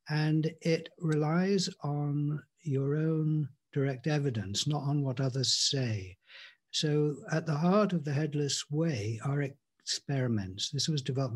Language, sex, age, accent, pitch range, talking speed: English, male, 60-79, British, 120-160 Hz, 135 wpm